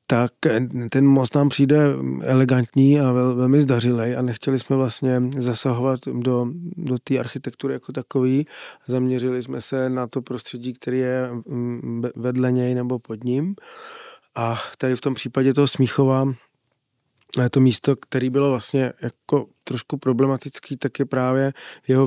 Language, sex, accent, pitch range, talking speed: Czech, male, native, 125-140 Hz, 145 wpm